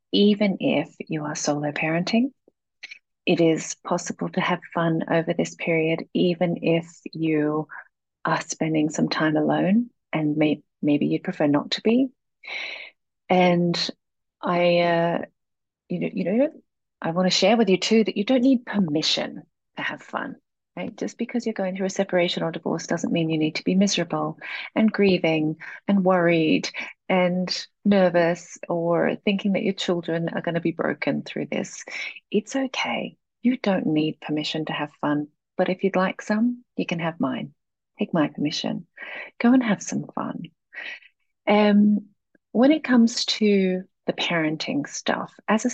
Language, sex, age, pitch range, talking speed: English, female, 30-49, 165-215 Hz, 165 wpm